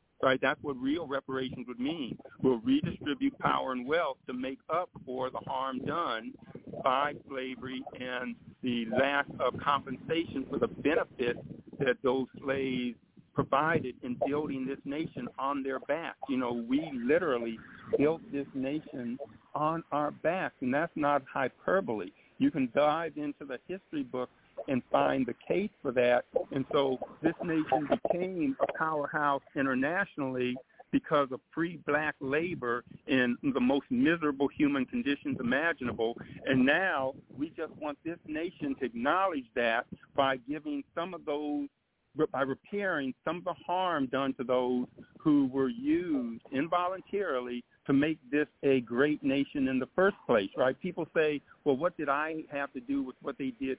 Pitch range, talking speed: 130-160 Hz, 155 wpm